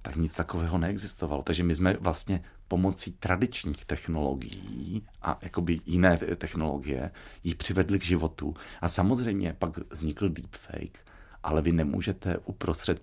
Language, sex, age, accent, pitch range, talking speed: Czech, male, 40-59, native, 75-95 Hz, 125 wpm